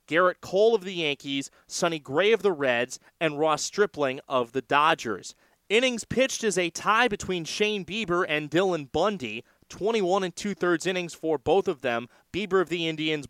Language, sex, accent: English, male, American